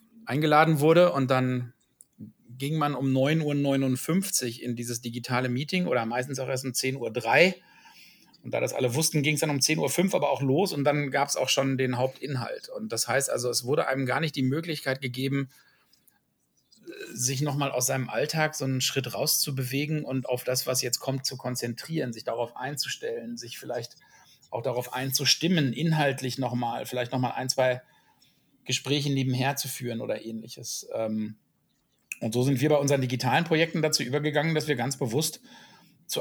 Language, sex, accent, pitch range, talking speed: German, male, German, 125-145 Hz, 175 wpm